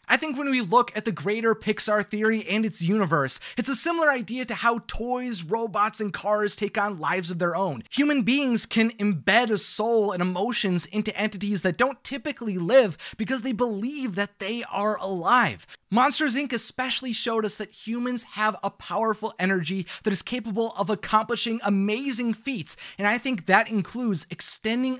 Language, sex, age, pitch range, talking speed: English, male, 30-49, 195-250 Hz, 180 wpm